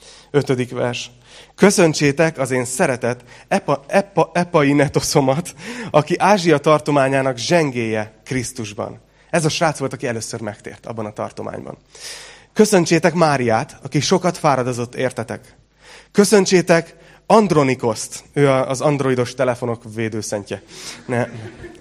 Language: Hungarian